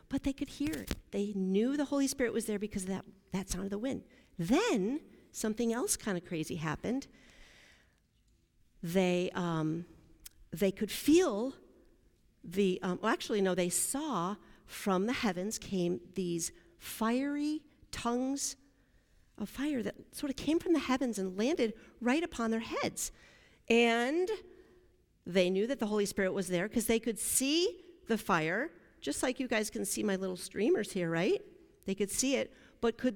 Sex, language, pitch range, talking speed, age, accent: female, English, 195-275 Hz, 165 wpm, 50-69, American